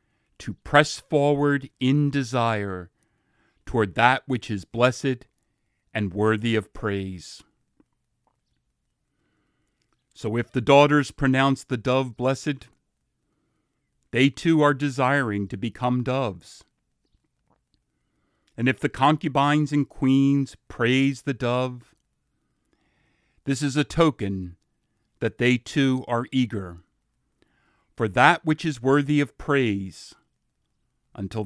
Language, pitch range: English, 110-135 Hz